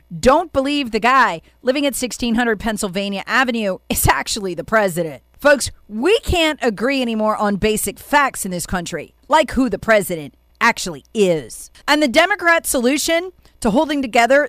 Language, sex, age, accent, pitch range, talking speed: English, female, 40-59, American, 180-285 Hz, 155 wpm